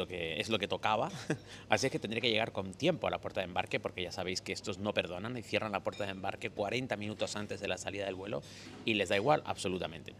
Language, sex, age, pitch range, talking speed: Spanish, male, 30-49, 100-120 Hz, 260 wpm